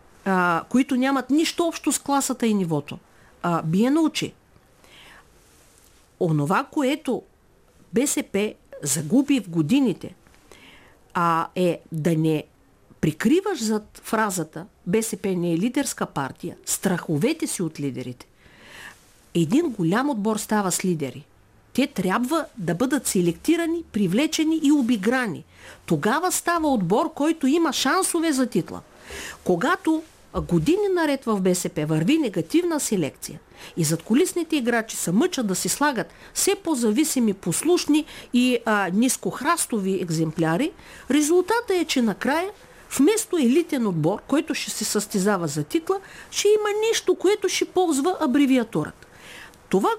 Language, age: Bulgarian, 50-69